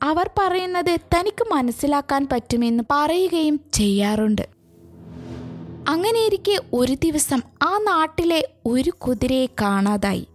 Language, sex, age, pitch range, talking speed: Malayalam, female, 20-39, 240-330 Hz, 85 wpm